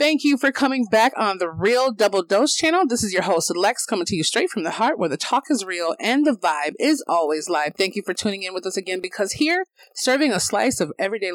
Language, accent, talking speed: English, American, 260 wpm